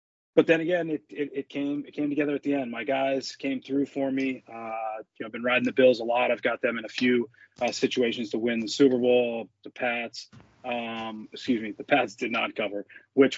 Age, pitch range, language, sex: 20-39, 120-140 Hz, English, male